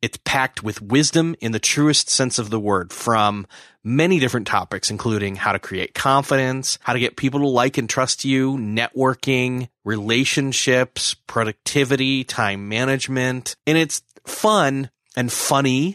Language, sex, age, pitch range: English, male, 30-49, 105-140 Hz